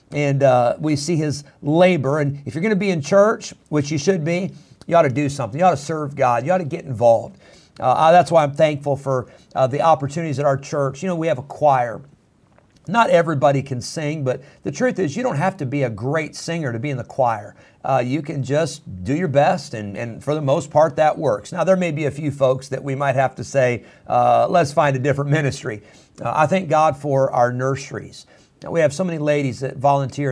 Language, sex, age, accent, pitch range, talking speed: English, male, 50-69, American, 130-155 Hz, 240 wpm